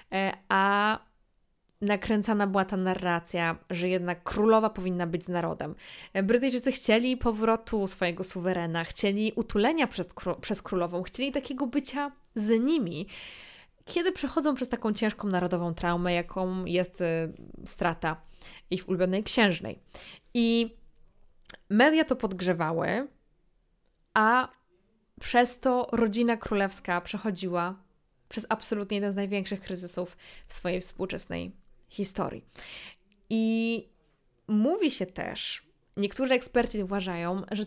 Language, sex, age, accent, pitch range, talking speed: Polish, female, 20-39, native, 185-230 Hz, 110 wpm